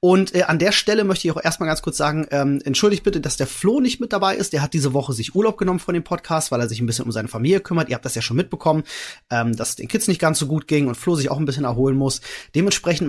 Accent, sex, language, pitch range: German, male, German, 130-190 Hz